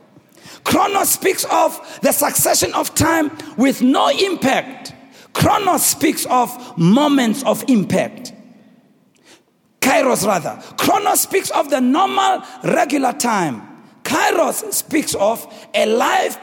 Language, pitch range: English, 215-305 Hz